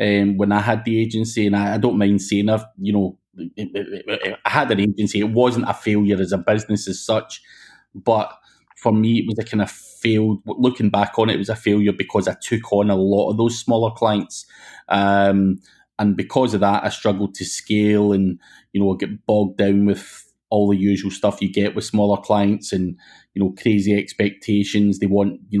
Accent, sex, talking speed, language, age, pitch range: British, male, 215 wpm, English, 20-39, 100-105 Hz